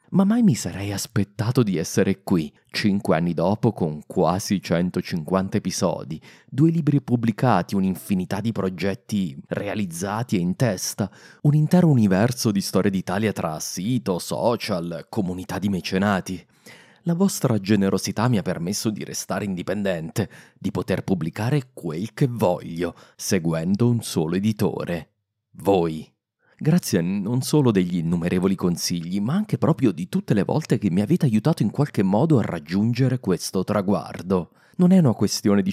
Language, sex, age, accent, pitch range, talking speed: Italian, male, 30-49, native, 95-130 Hz, 145 wpm